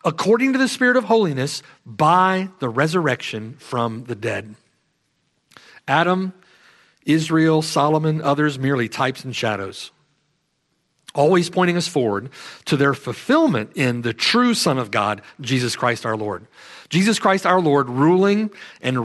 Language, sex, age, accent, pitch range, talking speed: English, male, 50-69, American, 130-195 Hz, 135 wpm